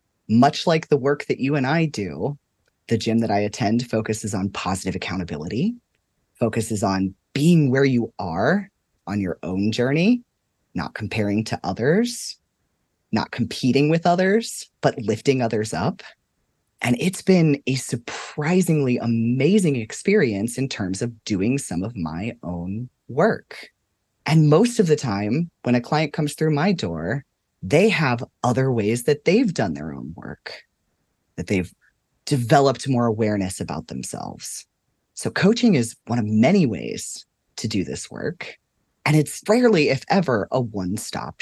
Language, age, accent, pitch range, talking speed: English, 30-49, American, 110-155 Hz, 150 wpm